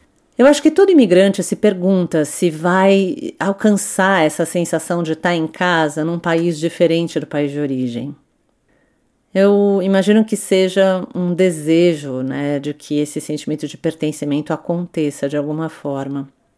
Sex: female